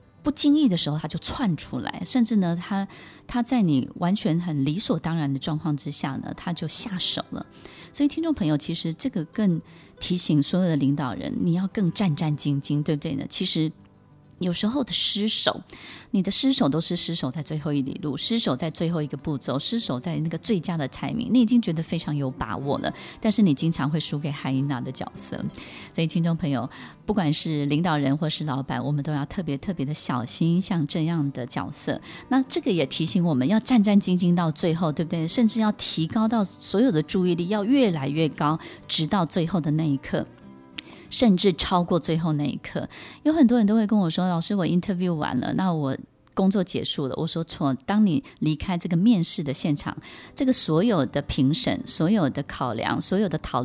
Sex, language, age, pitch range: female, Chinese, 20-39, 150-200 Hz